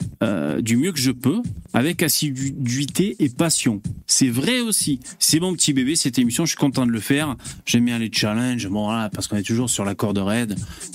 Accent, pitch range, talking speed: French, 120-170 Hz, 215 wpm